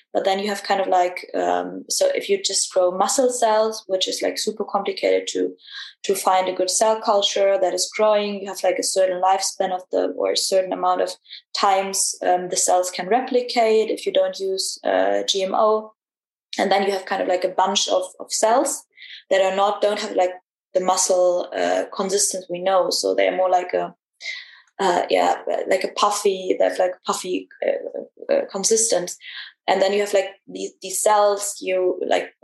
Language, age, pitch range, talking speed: English, 20-39, 185-205 Hz, 195 wpm